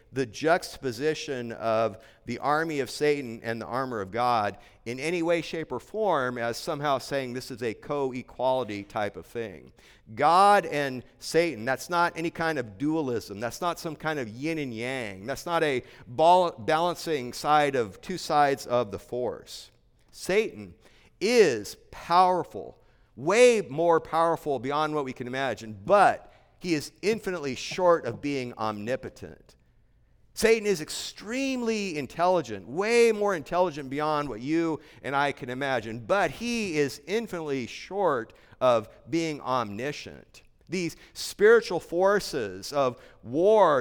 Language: English